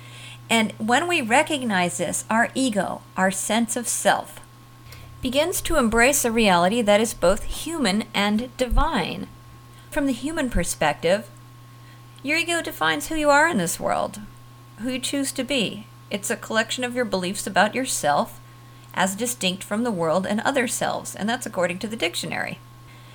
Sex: female